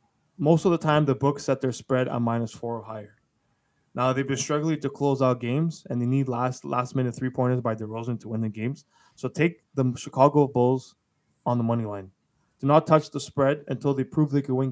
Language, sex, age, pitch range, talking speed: English, male, 20-39, 125-150 Hz, 215 wpm